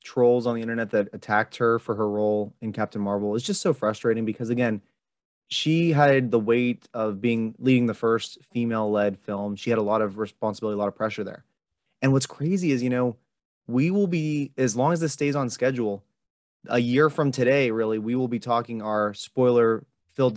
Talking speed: 200 wpm